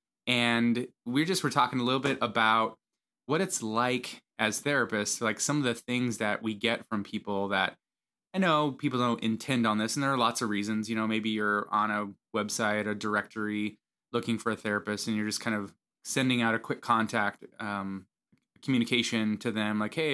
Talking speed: 200 wpm